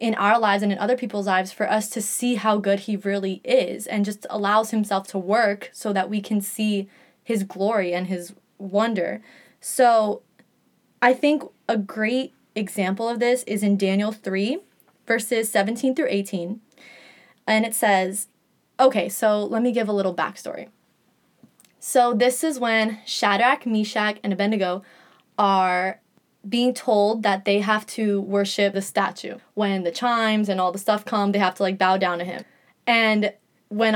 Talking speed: 170 wpm